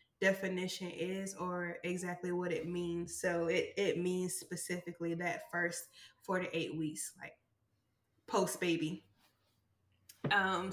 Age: 20-39